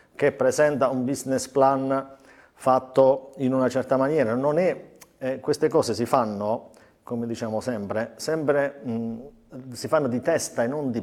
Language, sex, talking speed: Italian, male, 160 wpm